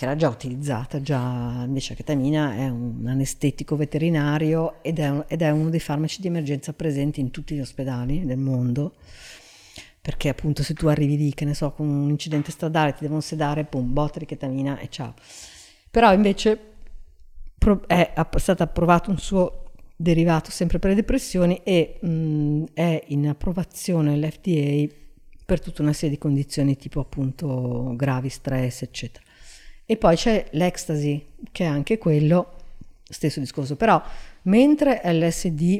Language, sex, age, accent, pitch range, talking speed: Italian, female, 50-69, native, 140-175 Hz, 155 wpm